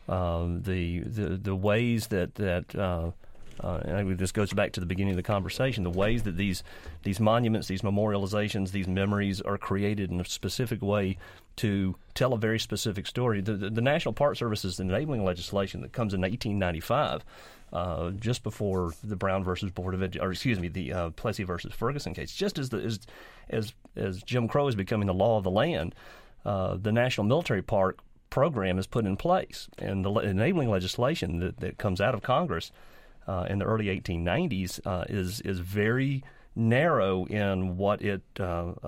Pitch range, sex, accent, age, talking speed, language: 95-110 Hz, male, American, 40-59, 195 wpm, English